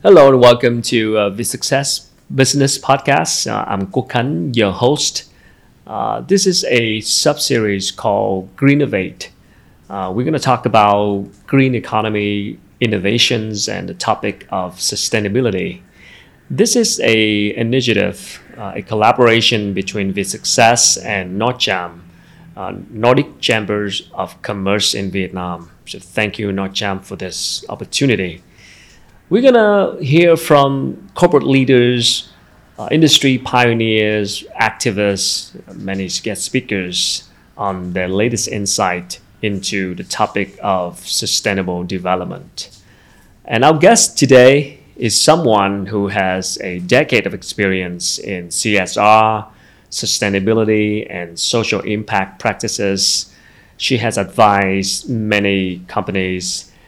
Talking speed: 115 wpm